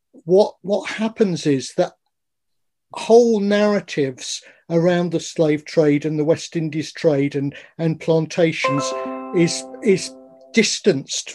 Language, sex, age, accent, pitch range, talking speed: English, male, 50-69, British, 155-195 Hz, 115 wpm